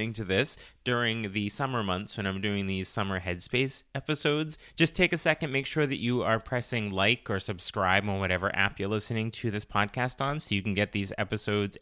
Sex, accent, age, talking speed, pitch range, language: male, American, 20-39, 210 wpm, 95-120 Hz, English